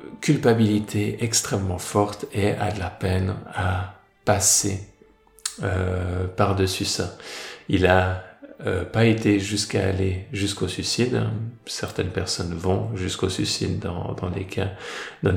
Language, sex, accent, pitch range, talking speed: French, male, French, 95-110 Hz, 130 wpm